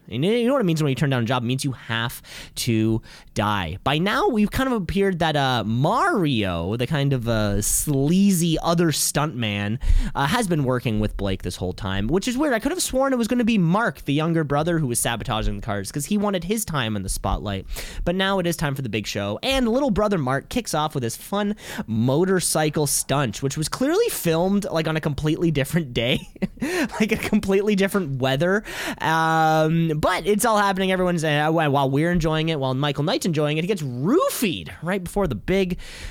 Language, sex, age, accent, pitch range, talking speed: English, male, 20-39, American, 130-195 Hz, 215 wpm